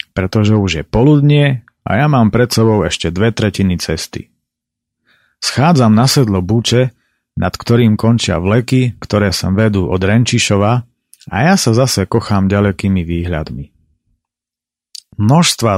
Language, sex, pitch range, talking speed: Slovak, male, 95-125 Hz, 130 wpm